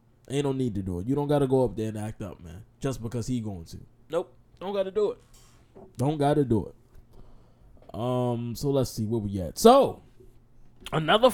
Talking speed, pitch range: 205 wpm, 115-165 Hz